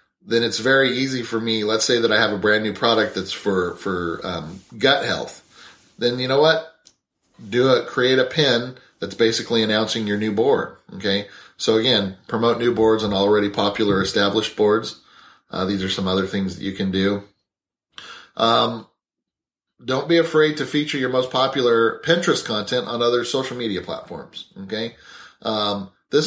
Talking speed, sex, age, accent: 175 wpm, male, 30-49, American